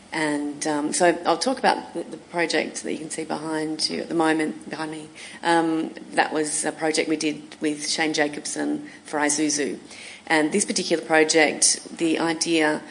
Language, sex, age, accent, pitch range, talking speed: English, female, 30-49, Australian, 150-165 Hz, 170 wpm